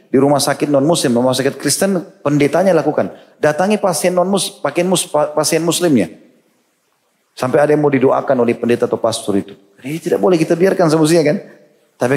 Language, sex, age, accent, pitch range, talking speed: Indonesian, male, 30-49, native, 110-140 Hz, 170 wpm